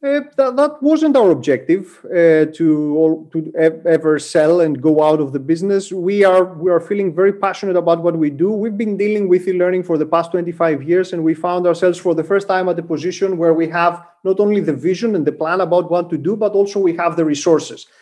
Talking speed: 235 wpm